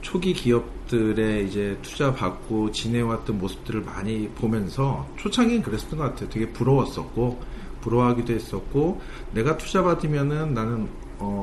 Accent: native